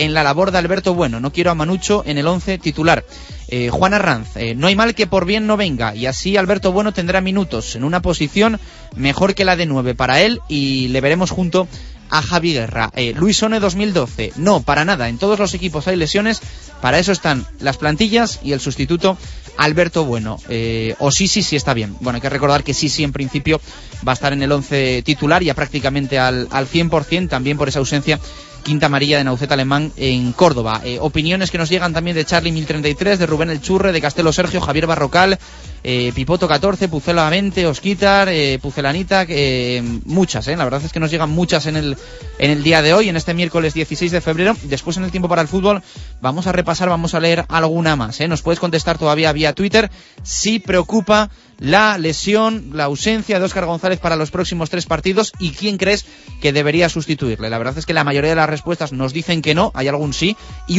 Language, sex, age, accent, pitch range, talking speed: Spanish, male, 30-49, Spanish, 140-185 Hz, 215 wpm